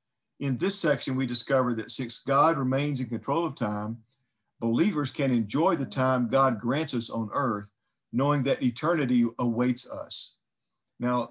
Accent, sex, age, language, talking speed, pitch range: American, male, 50-69, English, 155 wpm, 120-140 Hz